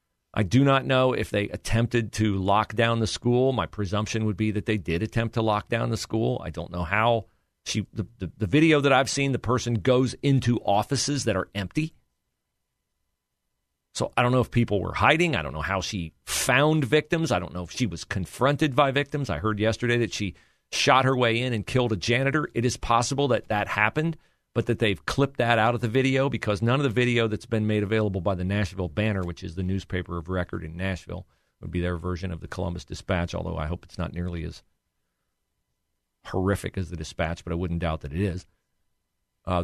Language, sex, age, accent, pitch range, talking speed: English, male, 40-59, American, 90-120 Hz, 220 wpm